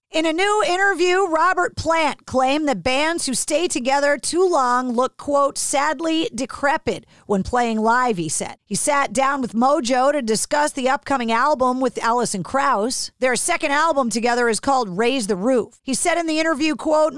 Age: 40-59